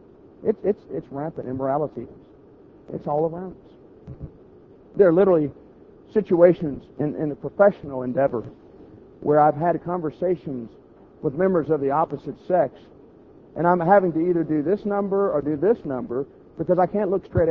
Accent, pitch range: American, 145-215 Hz